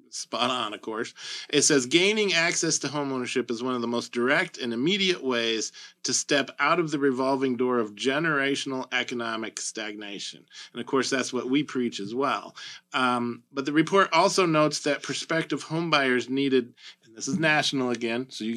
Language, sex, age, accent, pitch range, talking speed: English, male, 40-59, American, 120-150 Hz, 185 wpm